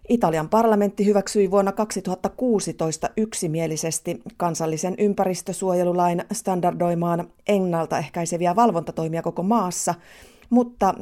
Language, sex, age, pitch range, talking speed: Finnish, female, 30-49, 165-200 Hz, 75 wpm